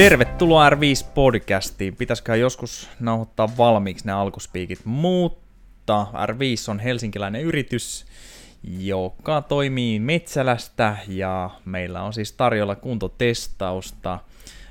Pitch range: 95-115 Hz